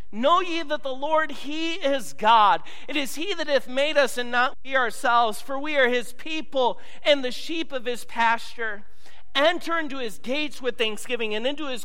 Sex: male